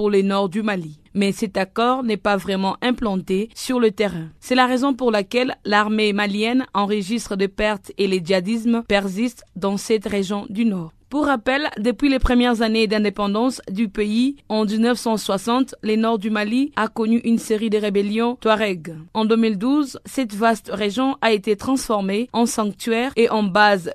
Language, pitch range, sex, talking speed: French, 200-230 Hz, female, 175 wpm